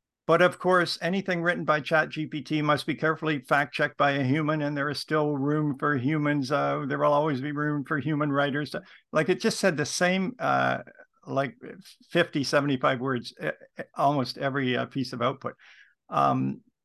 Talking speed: 170 wpm